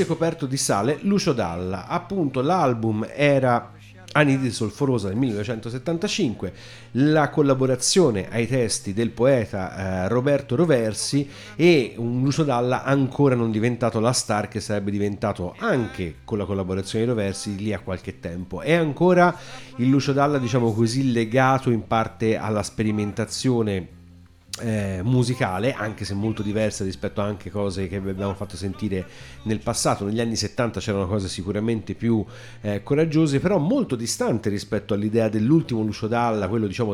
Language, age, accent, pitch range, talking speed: Italian, 30-49, native, 100-130 Hz, 145 wpm